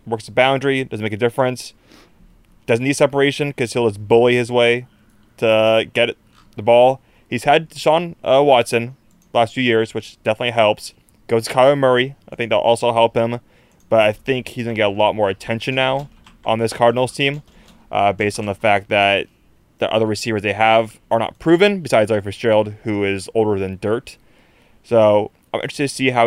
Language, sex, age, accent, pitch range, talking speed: English, male, 20-39, American, 110-130 Hz, 200 wpm